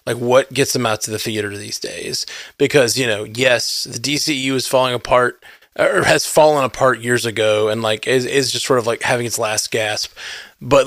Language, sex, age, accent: English, male, 20-39, American